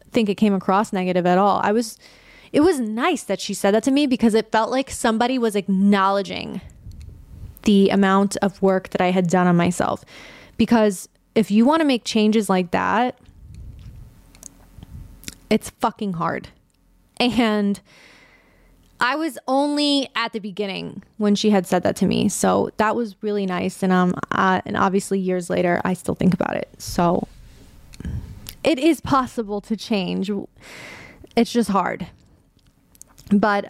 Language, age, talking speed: English, 20-39, 155 wpm